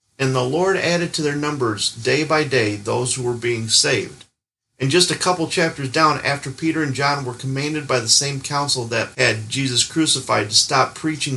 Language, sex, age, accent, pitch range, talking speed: English, male, 40-59, American, 115-145 Hz, 200 wpm